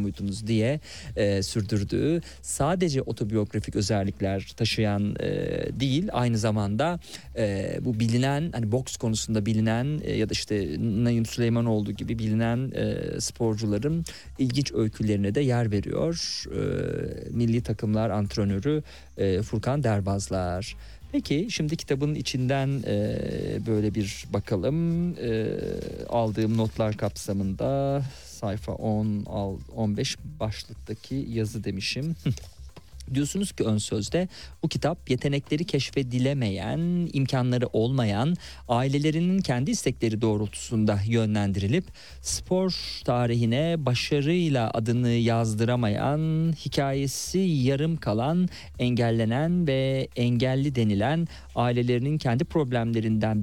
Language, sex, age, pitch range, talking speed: Turkish, male, 40-59, 110-145 Hz, 90 wpm